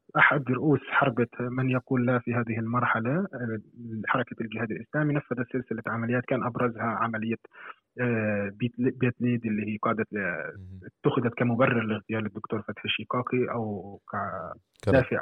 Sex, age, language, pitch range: male, 30-49, Arabic, 110-130 Hz